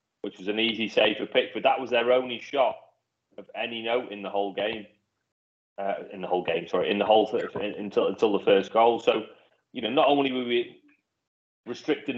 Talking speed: 210 wpm